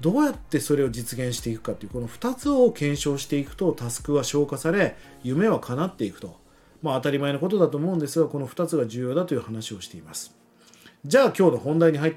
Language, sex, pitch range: Japanese, male, 125-205 Hz